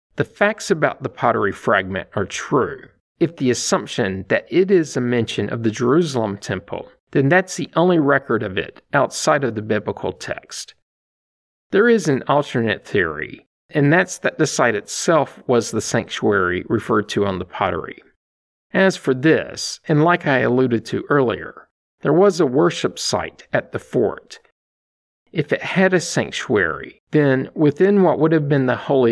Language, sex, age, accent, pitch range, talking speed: English, male, 50-69, American, 115-160 Hz, 165 wpm